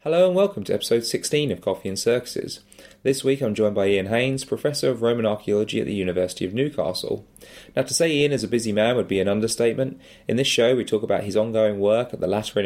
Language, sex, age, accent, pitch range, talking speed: English, male, 20-39, British, 95-115 Hz, 235 wpm